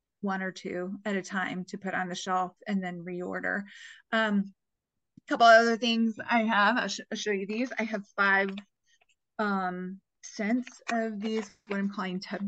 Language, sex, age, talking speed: English, female, 20-39, 175 wpm